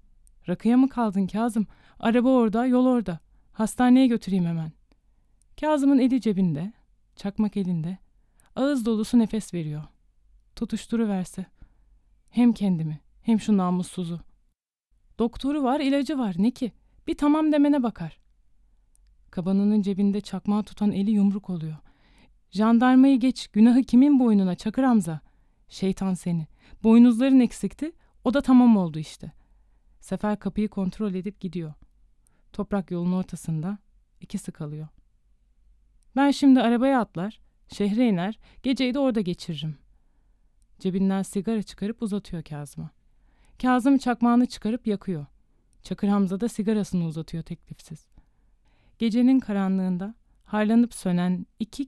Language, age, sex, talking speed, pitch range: Turkish, 30-49, female, 115 wpm, 180-240 Hz